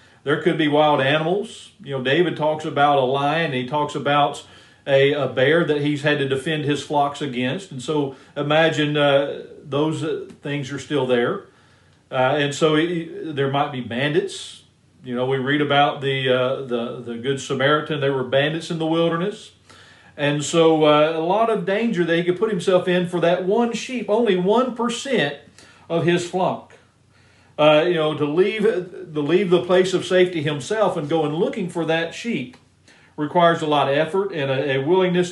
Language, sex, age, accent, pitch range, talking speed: English, male, 40-59, American, 145-180 Hz, 180 wpm